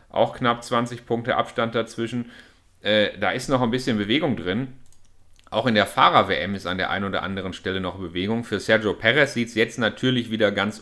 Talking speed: 200 wpm